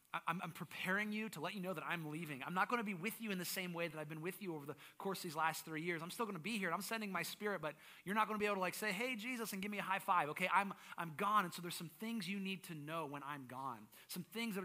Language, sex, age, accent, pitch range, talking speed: English, male, 30-49, American, 140-185 Hz, 330 wpm